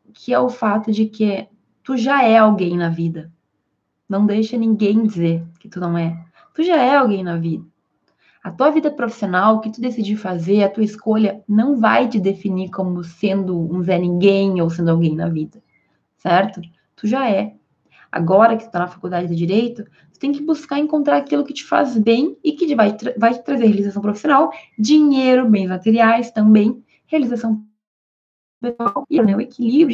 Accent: Brazilian